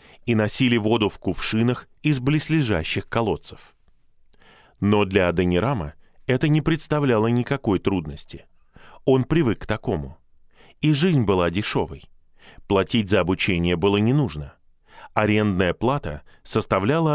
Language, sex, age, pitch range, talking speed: Russian, male, 20-39, 90-135 Hz, 115 wpm